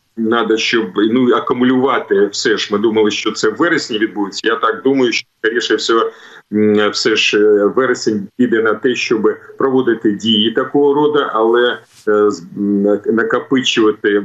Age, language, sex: 40-59, Ukrainian, male